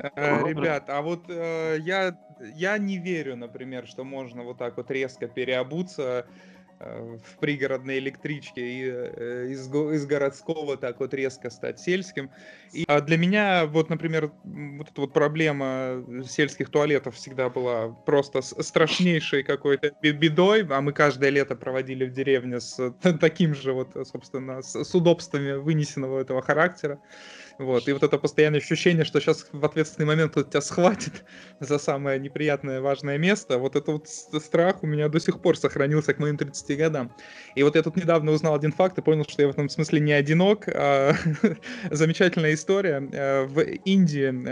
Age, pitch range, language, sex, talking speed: 20-39, 135-165 Hz, Russian, male, 155 wpm